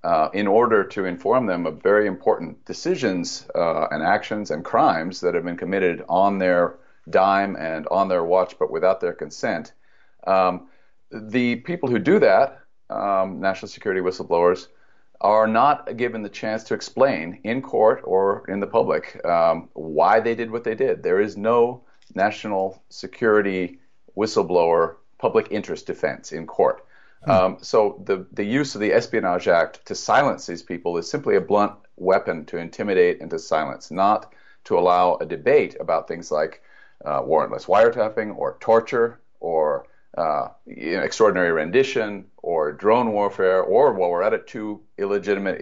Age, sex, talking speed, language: 40-59, male, 165 wpm, English